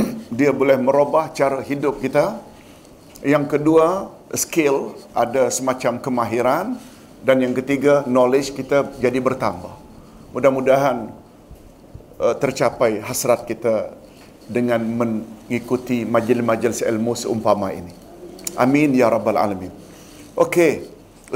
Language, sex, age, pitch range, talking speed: Malayalam, male, 50-69, 130-175 Hz, 100 wpm